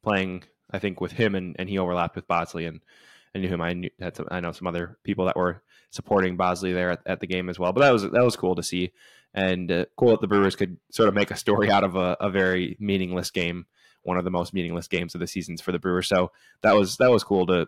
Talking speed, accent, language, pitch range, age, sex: 275 wpm, American, English, 90-100 Hz, 10-29, male